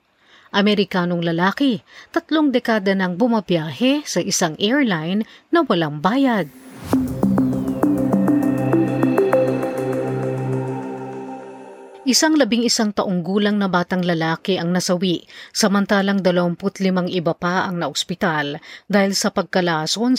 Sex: female